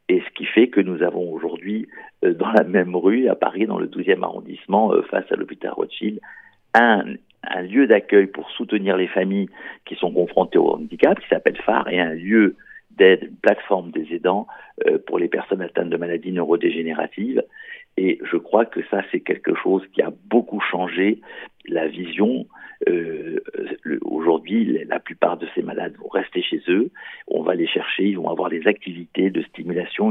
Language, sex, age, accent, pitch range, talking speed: French, male, 50-69, French, 335-435 Hz, 175 wpm